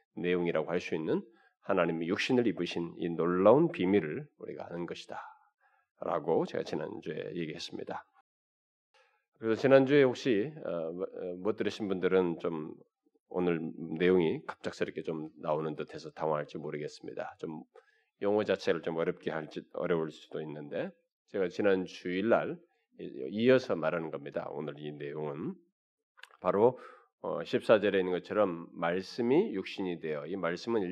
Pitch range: 85-130 Hz